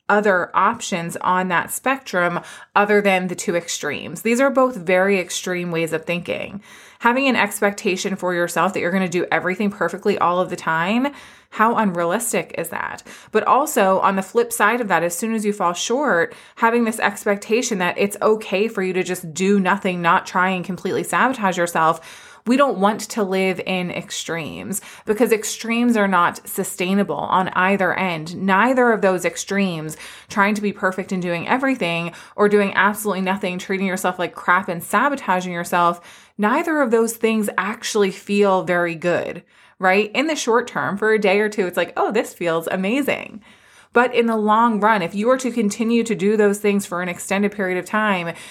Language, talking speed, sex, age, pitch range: English, 185 wpm, female, 20-39, 180-220 Hz